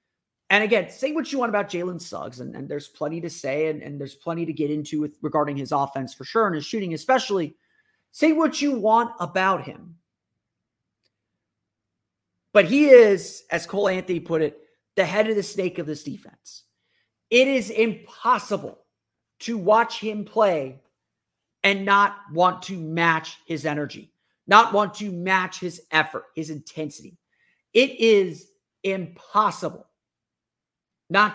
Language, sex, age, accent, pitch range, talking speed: English, male, 30-49, American, 160-220 Hz, 150 wpm